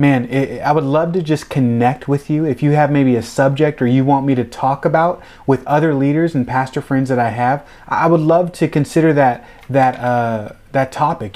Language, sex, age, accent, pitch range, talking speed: English, male, 30-49, American, 125-155 Hz, 215 wpm